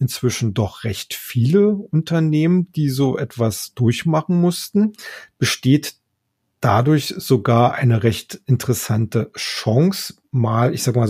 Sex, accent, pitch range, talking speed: male, German, 115-140 Hz, 115 wpm